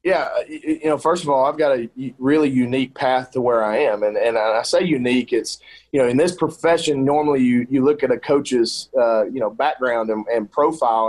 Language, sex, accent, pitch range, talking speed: English, male, American, 115-165 Hz, 220 wpm